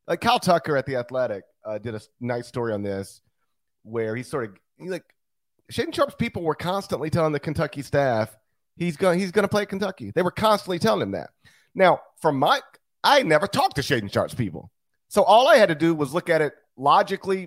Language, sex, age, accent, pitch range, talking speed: English, male, 40-59, American, 115-170 Hz, 215 wpm